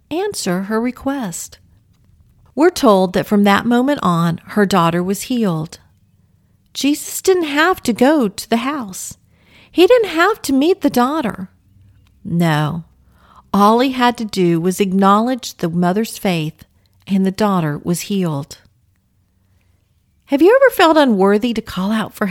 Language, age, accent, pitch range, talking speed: English, 50-69, American, 175-270 Hz, 145 wpm